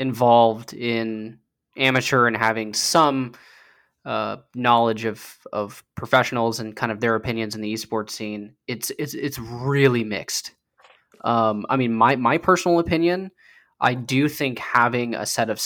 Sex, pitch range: male, 115-140 Hz